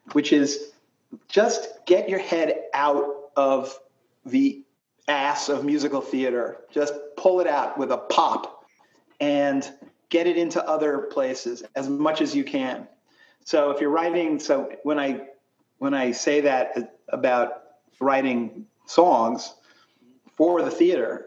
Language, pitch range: English, 135-215 Hz